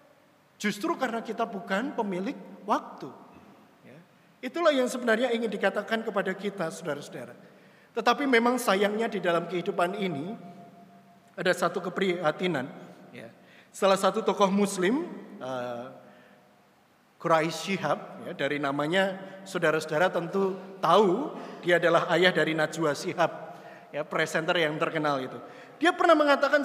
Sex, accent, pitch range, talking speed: male, native, 180-280 Hz, 115 wpm